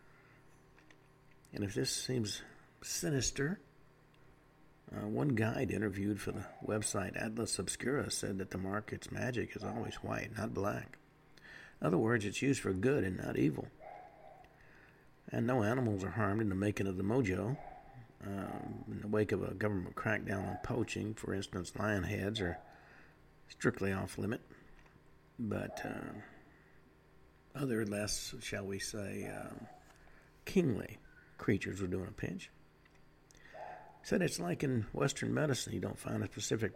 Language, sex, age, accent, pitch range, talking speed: English, male, 50-69, American, 100-125 Hz, 140 wpm